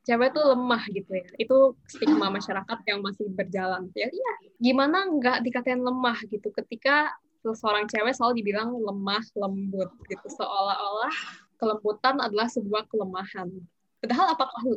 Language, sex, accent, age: Indonesian, female, native, 10-29